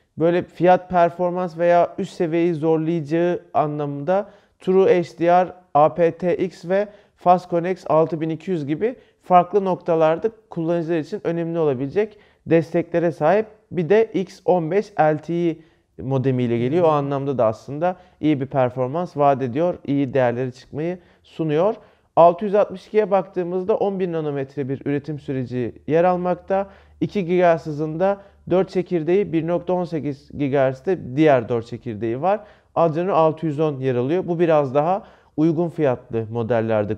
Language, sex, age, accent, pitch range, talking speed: Turkish, male, 40-59, native, 145-185 Hz, 115 wpm